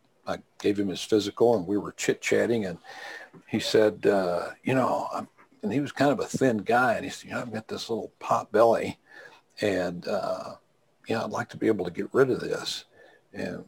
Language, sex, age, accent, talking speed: English, male, 60-79, American, 220 wpm